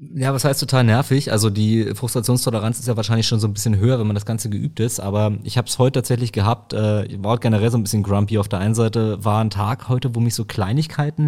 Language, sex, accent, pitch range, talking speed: German, male, German, 105-130 Hz, 255 wpm